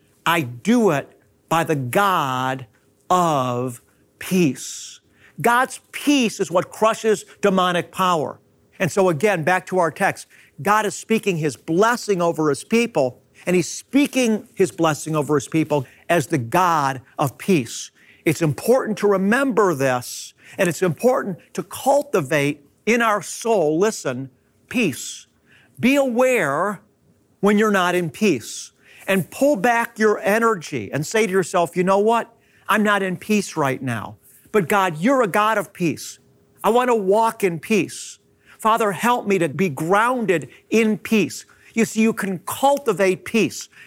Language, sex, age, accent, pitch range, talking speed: English, male, 50-69, American, 155-225 Hz, 150 wpm